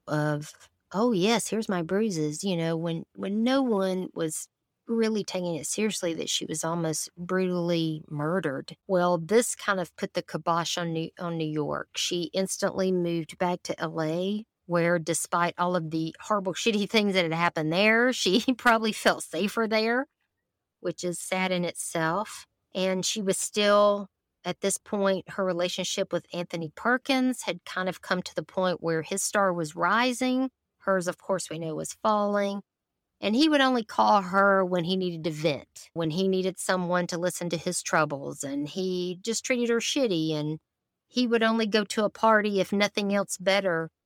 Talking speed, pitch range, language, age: 180 wpm, 170-205 Hz, English, 50-69